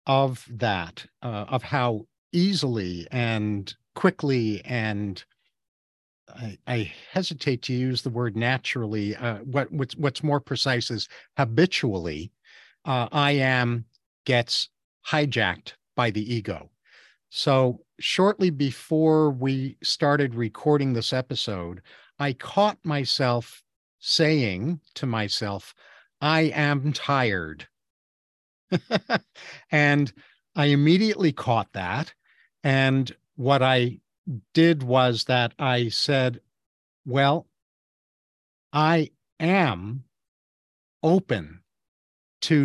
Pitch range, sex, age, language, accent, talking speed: 115-150 Hz, male, 50-69, English, American, 95 wpm